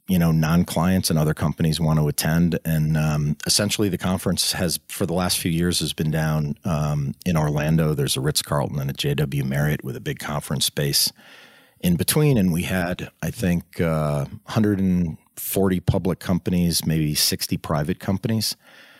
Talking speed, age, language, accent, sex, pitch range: 170 wpm, 40-59, English, American, male, 75-90 Hz